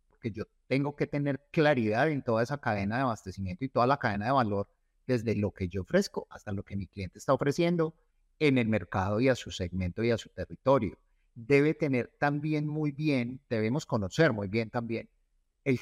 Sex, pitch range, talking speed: male, 100-125 Hz, 195 wpm